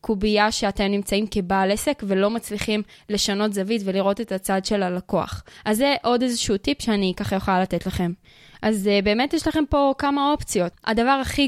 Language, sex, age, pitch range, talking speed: Hebrew, female, 20-39, 200-255 Hz, 175 wpm